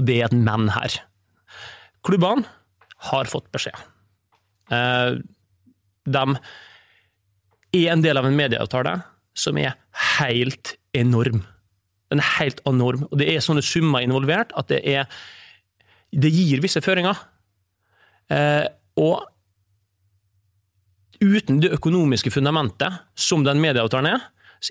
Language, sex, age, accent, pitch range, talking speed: English, male, 30-49, Swedish, 110-160 Hz, 125 wpm